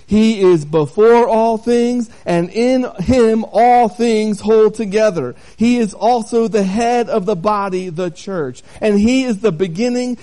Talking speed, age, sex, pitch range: 160 wpm, 40-59, male, 155-220 Hz